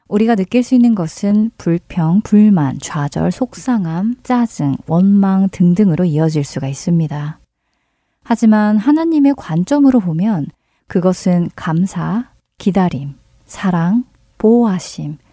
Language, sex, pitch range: Korean, female, 165-225 Hz